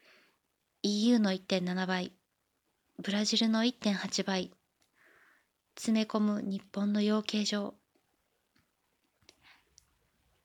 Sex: female